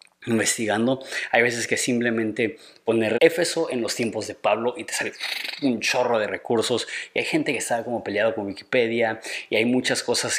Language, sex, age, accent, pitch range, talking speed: Spanish, male, 20-39, Mexican, 110-125 Hz, 185 wpm